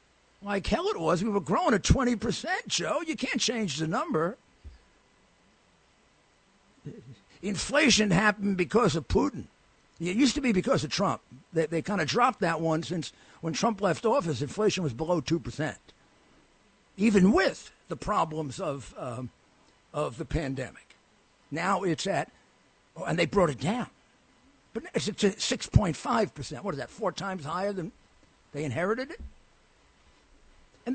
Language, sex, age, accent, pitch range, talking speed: English, male, 50-69, American, 155-220 Hz, 155 wpm